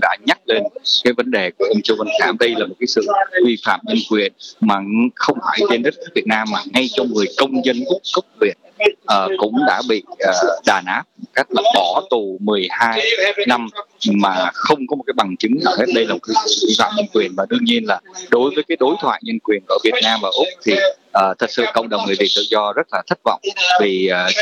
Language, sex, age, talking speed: Vietnamese, male, 20-39, 245 wpm